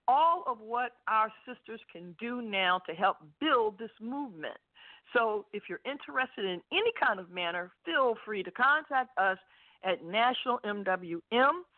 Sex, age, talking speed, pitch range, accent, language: female, 50-69, 150 wpm, 210-270 Hz, American, English